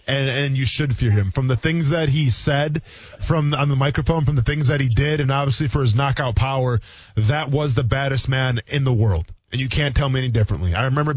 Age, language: 20-39, English